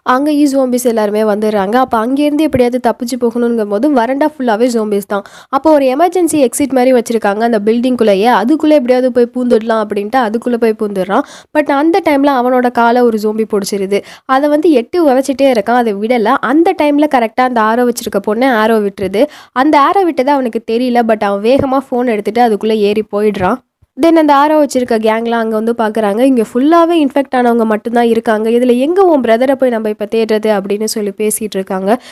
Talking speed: 175 wpm